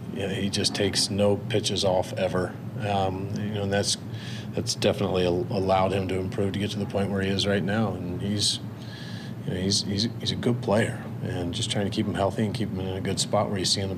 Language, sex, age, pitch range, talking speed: English, male, 40-59, 100-115 Hz, 245 wpm